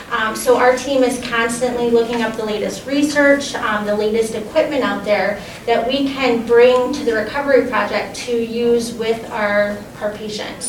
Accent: American